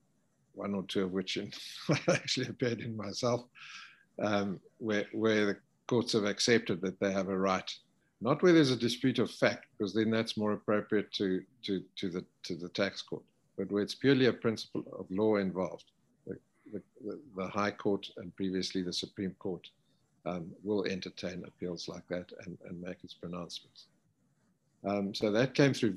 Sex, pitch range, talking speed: male, 95-115 Hz, 180 wpm